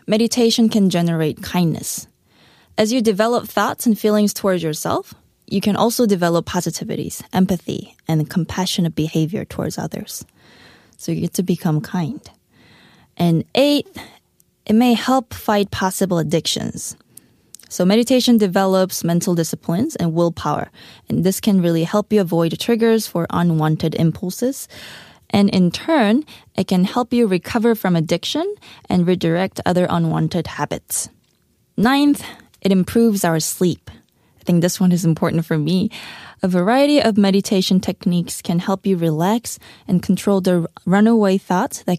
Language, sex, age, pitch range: Korean, female, 20-39, 170-220 Hz